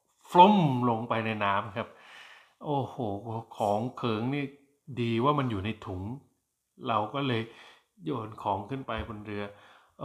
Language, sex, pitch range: Thai, male, 100-125 Hz